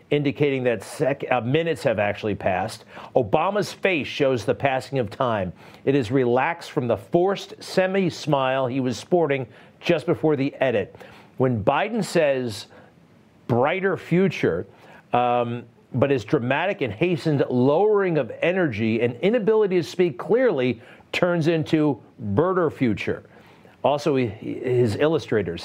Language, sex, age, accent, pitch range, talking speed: English, male, 50-69, American, 110-145 Hz, 130 wpm